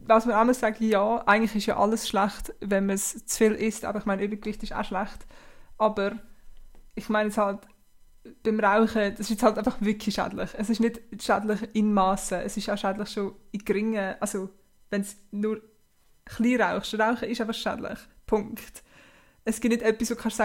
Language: German